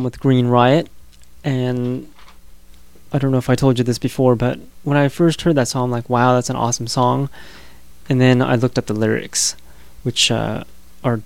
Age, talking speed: 20-39, 195 wpm